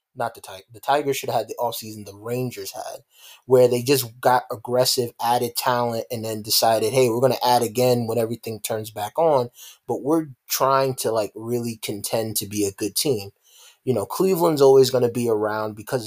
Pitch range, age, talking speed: 110-135 Hz, 20-39, 205 wpm